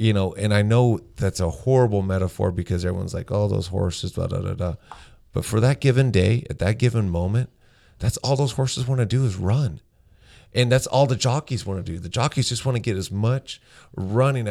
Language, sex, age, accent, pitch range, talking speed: English, male, 40-59, American, 95-120 Hz, 220 wpm